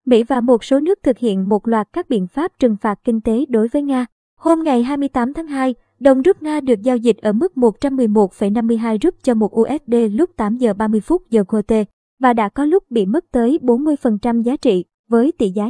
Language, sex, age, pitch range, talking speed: Vietnamese, male, 20-39, 215-265 Hz, 220 wpm